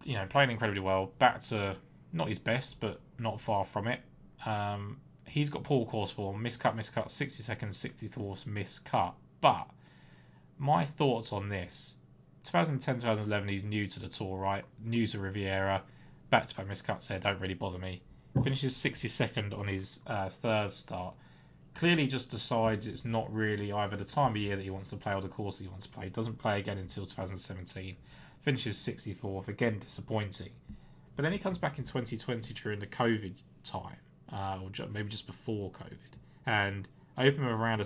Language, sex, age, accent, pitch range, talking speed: English, male, 20-39, British, 100-120 Hz, 190 wpm